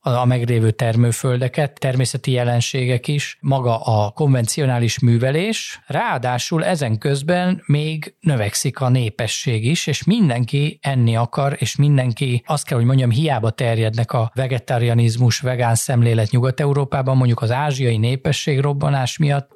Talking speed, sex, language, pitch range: 125 wpm, male, Hungarian, 115-140 Hz